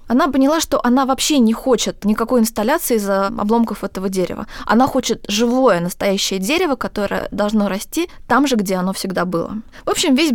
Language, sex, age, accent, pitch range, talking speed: Russian, female, 20-39, native, 210-260 Hz, 175 wpm